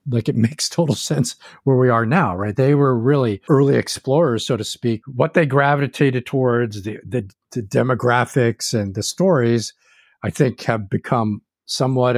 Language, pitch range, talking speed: English, 115-140 Hz, 170 wpm